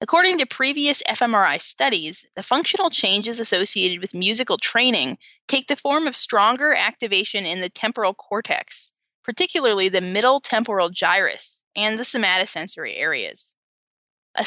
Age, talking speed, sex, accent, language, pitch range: 20-39, 135 wpm, female, American, English, 195-265 Hz